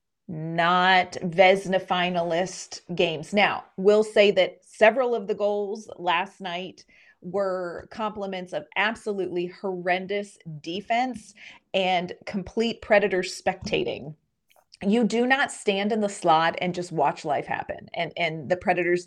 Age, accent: 30-49, American